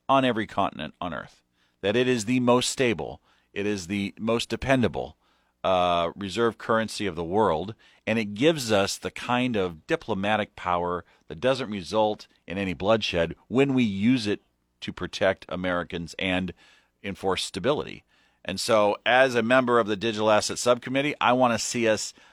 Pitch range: 90-115 Hz